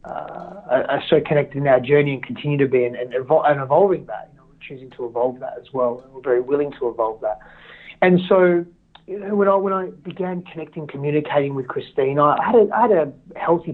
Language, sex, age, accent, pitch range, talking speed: English, male, 30-49, Australian, 145-185 Hz, 230 wpm